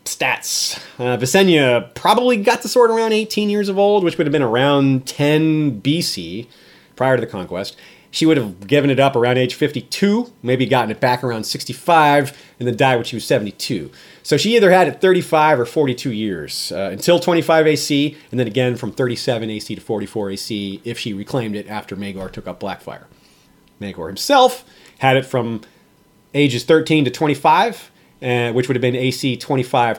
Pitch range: 125-165 Hz